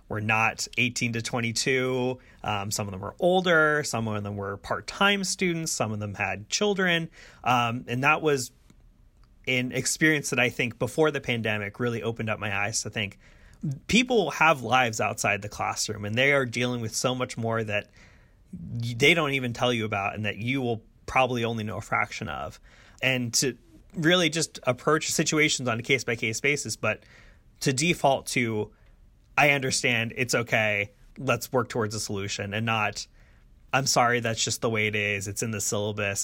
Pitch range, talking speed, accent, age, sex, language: 105-135 Hz, 180 wpm, American, 30-49, male, English